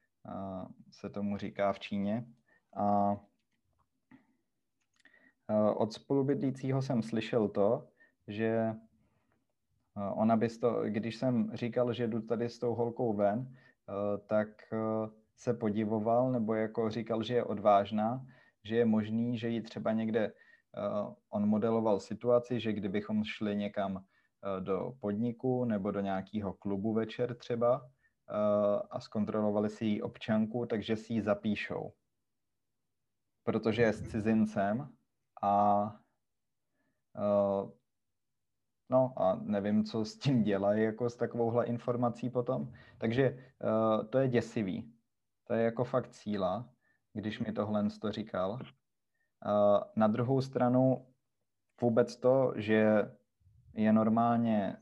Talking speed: 110 wpm